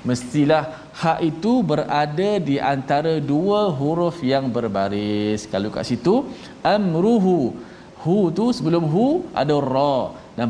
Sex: male